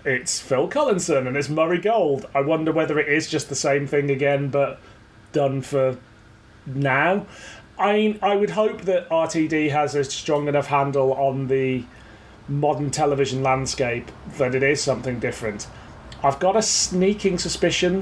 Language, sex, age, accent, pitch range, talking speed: English, male, 30-49, British, 125-165 Hz, 160 wpm